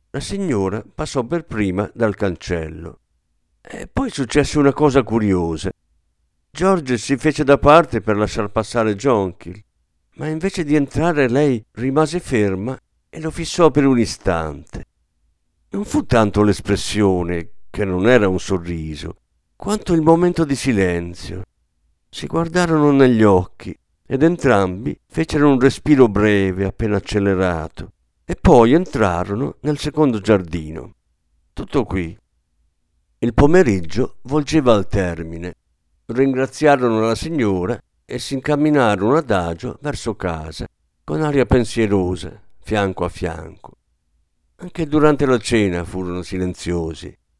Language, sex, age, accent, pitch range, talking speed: Italian, male, 50-69, native, 85-135 Hz, 120 wpm